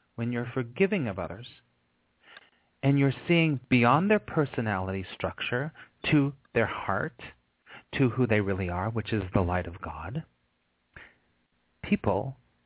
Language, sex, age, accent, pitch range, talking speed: English, male, 40-59, American, 100-145 Hz, 130 wpm